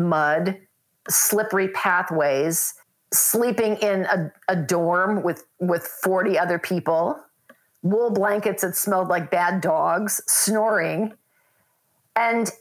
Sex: female